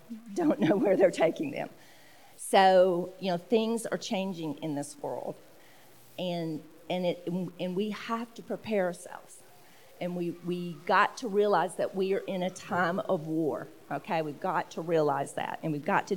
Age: 40-59